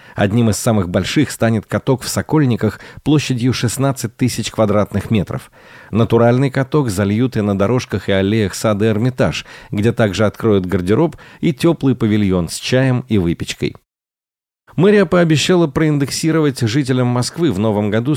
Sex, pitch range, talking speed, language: male, 105-140 Hz, 140 wpm, Russian